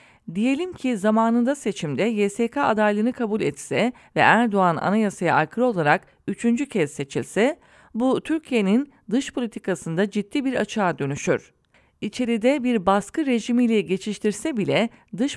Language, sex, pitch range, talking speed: English, female, 180-250 Hz, 120 wpm